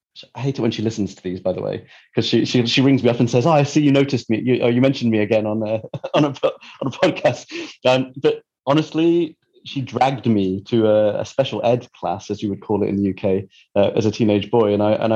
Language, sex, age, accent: English, male, 30-49, British